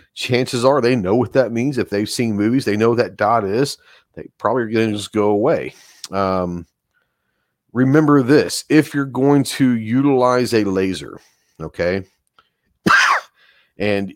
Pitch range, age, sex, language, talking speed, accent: 95-125 Hz, 40-59, male, English, 155 wpm, American